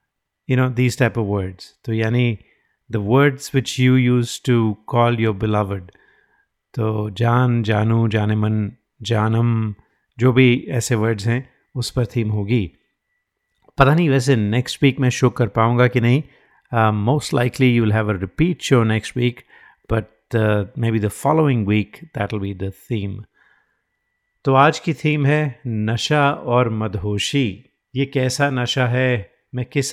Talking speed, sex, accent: 150 wpm, male, native